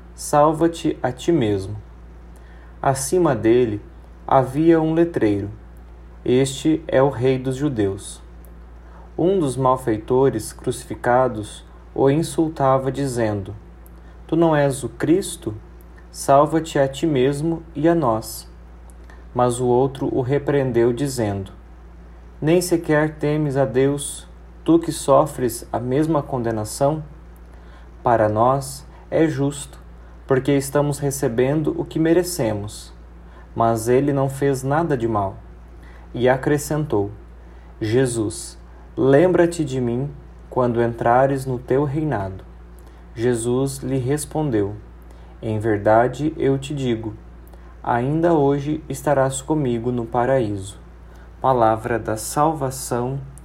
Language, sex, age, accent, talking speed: Portuguese, male, 30-49, Brazilian, 110 wpm